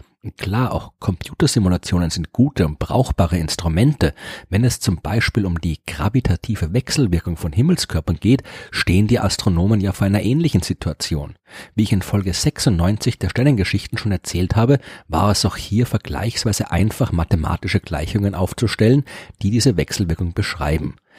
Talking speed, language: 140 wpm, German